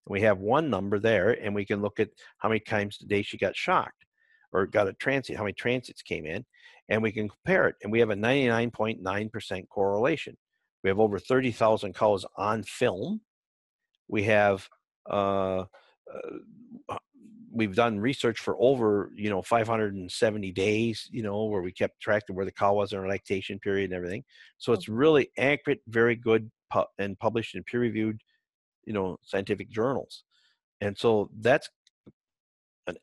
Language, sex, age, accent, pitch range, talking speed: English, male, 50-69, American, 100-120 Hz, 175 wpm